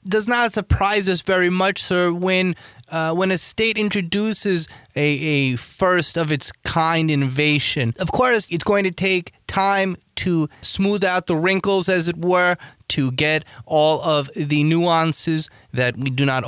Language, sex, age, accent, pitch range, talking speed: English, male, 20-39, American, 135-180 Hz, 155 wpm